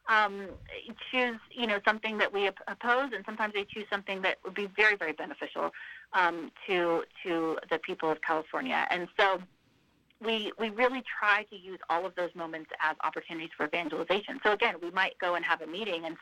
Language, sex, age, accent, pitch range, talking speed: English, female, 30-49, American, 170-225 Hz, 190 wpm